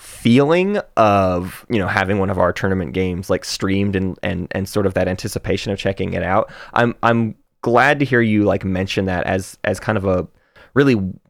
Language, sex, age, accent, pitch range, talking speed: English, male, 20-39, American, 95-120 Hz, 200 wpm